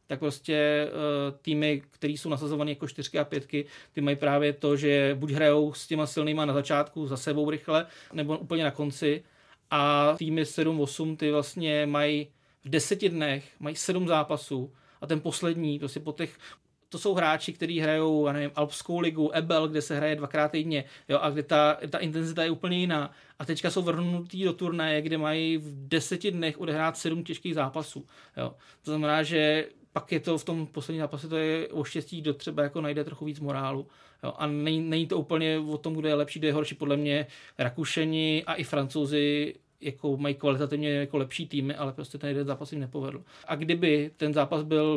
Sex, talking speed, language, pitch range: male, 195 wpm, Czech, 145-160 Hz